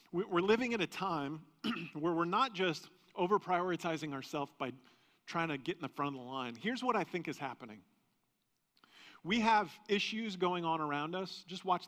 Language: English